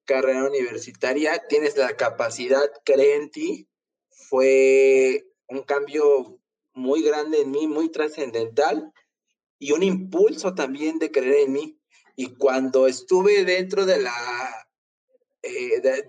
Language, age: Spanish, 30-49